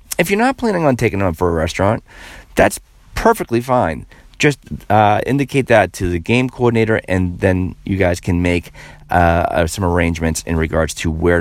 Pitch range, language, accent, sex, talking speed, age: 85-125 Hz, English, American, male, 185 wpm, 30-49